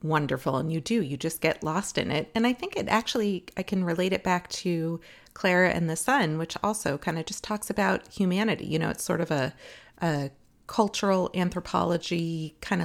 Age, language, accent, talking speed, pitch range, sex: 30-49, English, American, 200 wpm, 160-215 Hz, female